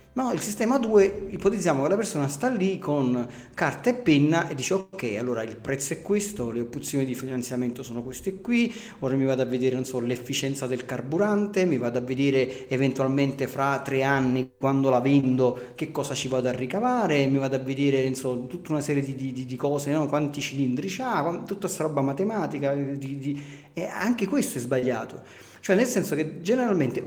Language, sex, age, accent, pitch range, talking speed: Italian, male, 40-59, native, 130-155 Hz, 195 wpm